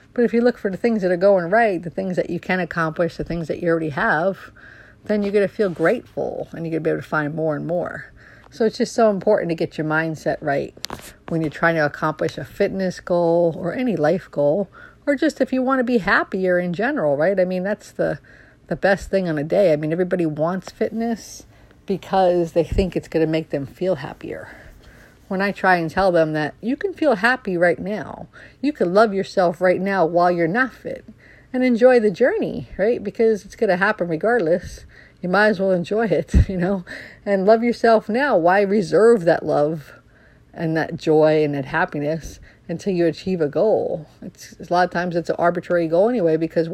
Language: English